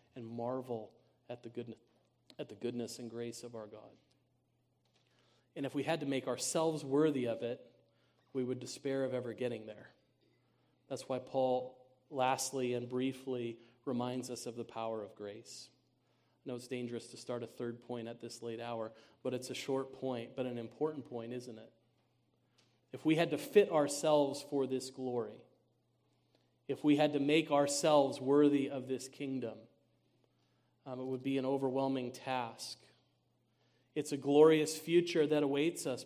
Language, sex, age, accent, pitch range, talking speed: English, male, 40-59, American, 125-145 Hz, 165 wpm